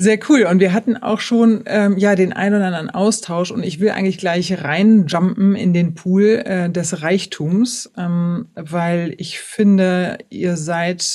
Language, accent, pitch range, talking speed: German, German, 165-195 Hz, 170 wpm